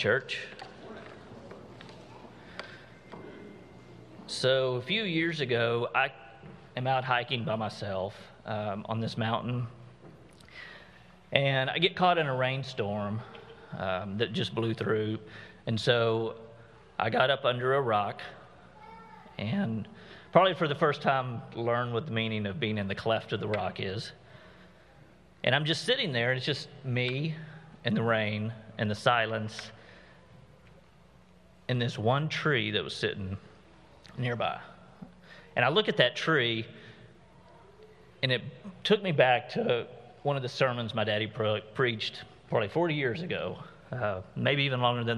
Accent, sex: American, male